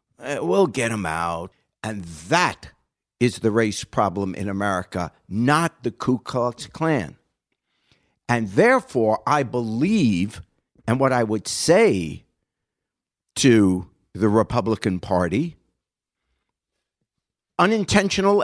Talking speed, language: 100 wpm, English